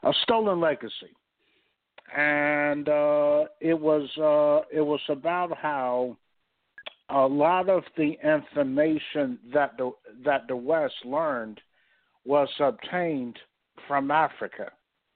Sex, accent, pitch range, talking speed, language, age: male, American, 125-155 Hz, 105 wpm, English, 60-79